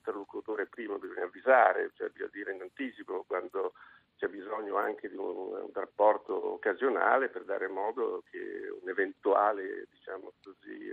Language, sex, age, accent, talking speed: Italian, male, 50-69, native, 130 wpm